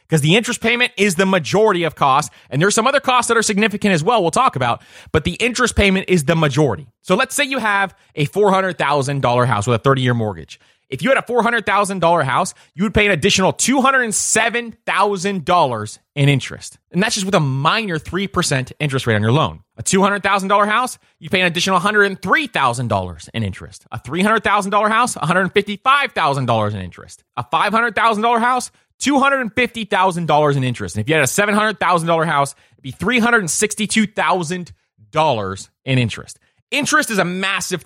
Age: 30-49